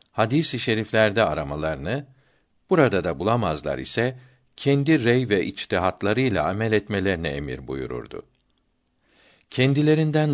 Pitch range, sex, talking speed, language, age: 95-125 Hz, male, 95 wpm, Turkish, 60-79